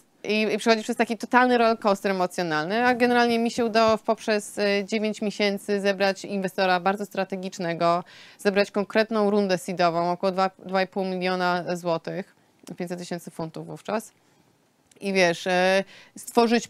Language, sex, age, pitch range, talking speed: Polish, female, 20-39, 180-200 Hz, 135 wpm